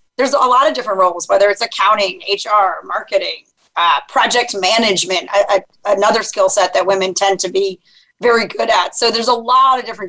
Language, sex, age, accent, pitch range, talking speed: English, female, 30-49, American, 205-240 Hz, 185 wpm